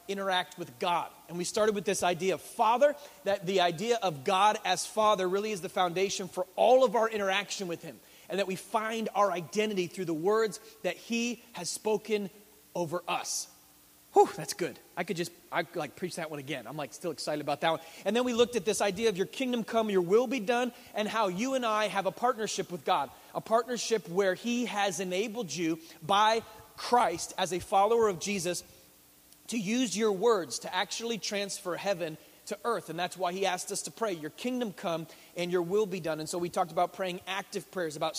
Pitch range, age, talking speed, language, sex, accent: 175-215 Hz, 30-49, 215 wpm, English, male, American